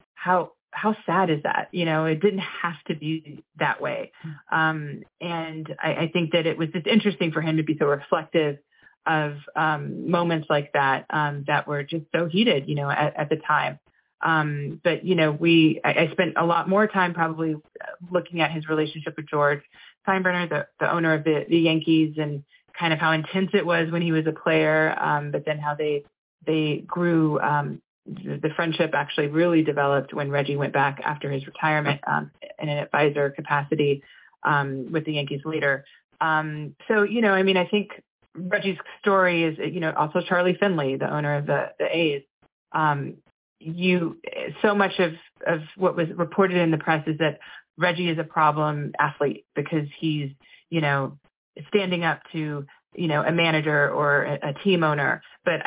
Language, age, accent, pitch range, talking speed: English, 30-49, American, 150-175 Hz, 190 wpm